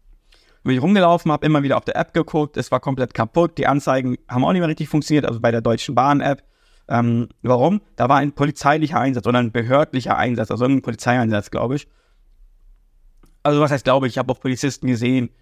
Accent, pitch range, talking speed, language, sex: German, 120-150 Hz, 205 wpm, German, male